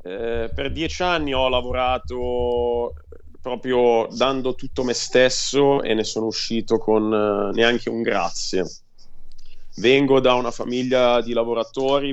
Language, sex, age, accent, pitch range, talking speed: Italian, male, 30-49, native, 100-120 Hz, 130 wpm